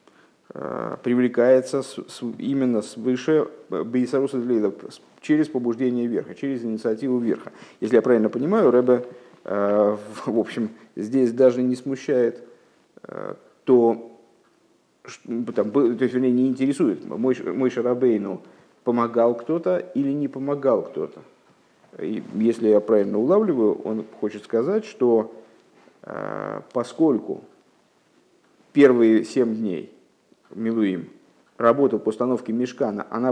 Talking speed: 100 wpm